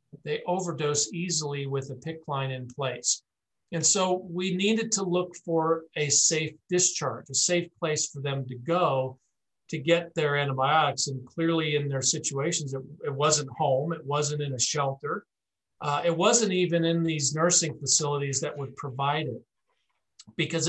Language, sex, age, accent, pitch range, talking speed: English, male, 50-69, American, 140-175 Hz, 165 wpm